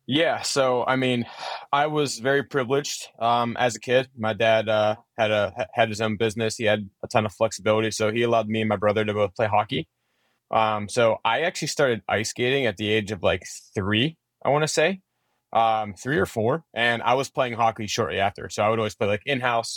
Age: 20-39